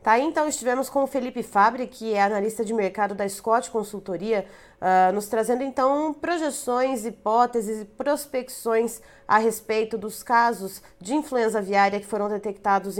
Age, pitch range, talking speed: 20-39, 195-235 Hz, 150 wpm